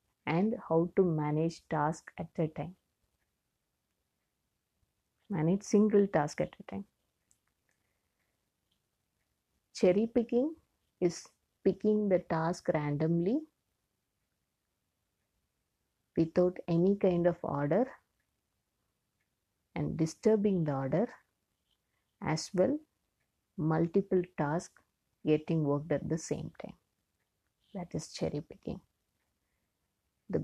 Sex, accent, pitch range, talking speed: female, Indian, 150-190 Hz, 90 wpm